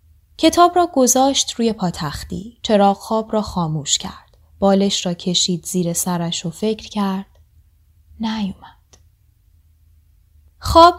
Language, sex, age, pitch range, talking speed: Persian, female, 20-39, 170-245 Hz, 110 wpm